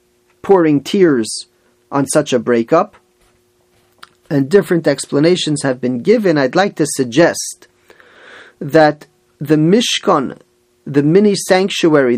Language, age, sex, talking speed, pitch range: English, 40-59, male, 105 wpm, 135-175 Hz